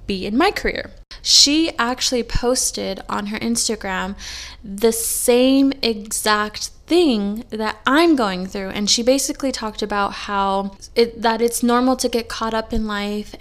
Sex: female